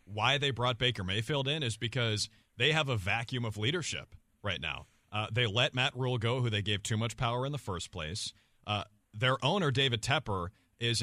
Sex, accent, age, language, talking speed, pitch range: male, American, 40-59, English, 205 wpm, 115-150 Hz